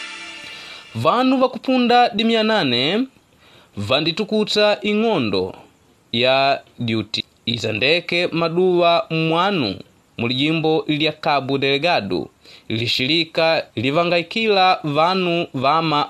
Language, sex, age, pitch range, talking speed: English, male, 30-49, 125-185 Hz, 65 wpm